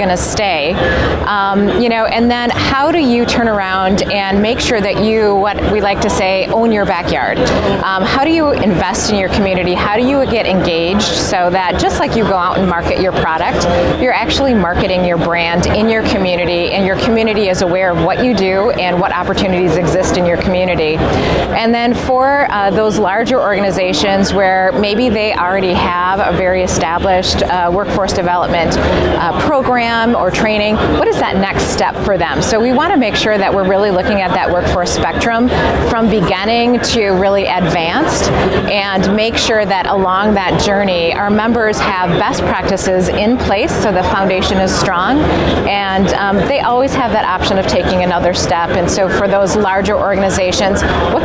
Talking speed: 185 wpm